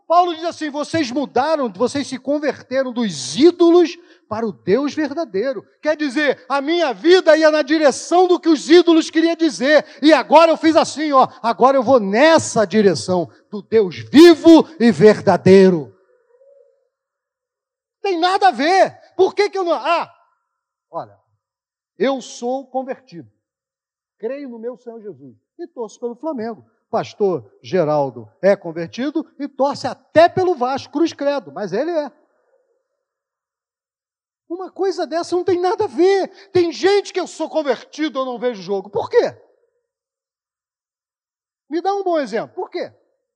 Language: Portuguese